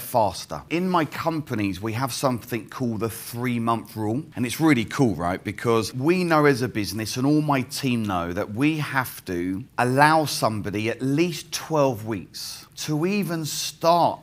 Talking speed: 175 wpm